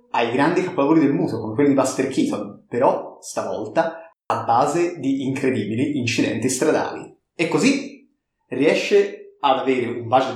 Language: Italian